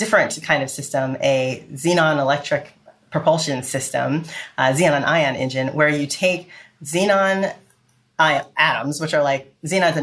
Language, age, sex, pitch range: English, 30-49, female, 135-165 Hz